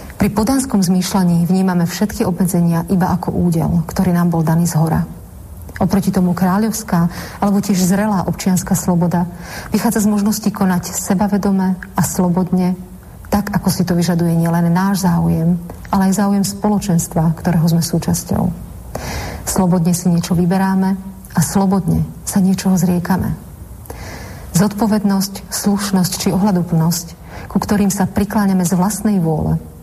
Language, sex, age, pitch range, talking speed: Slovak, female, 40-59, 175-200 Hz, 130 wpm